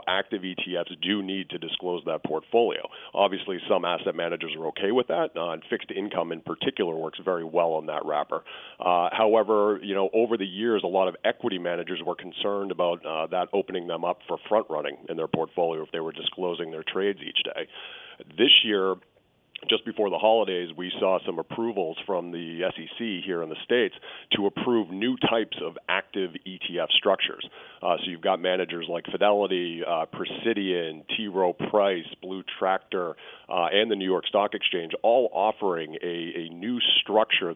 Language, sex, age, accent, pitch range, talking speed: English, male, 40-59, American, 85-105 Hz, 180 wpm